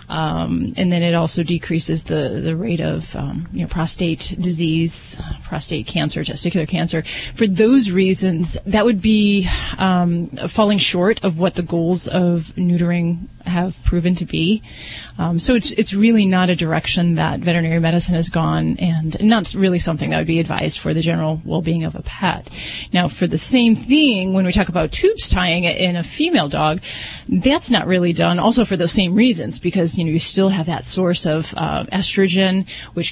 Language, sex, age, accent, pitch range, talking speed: English, female, 30-49, American, 165-190 Hz, 180 wpm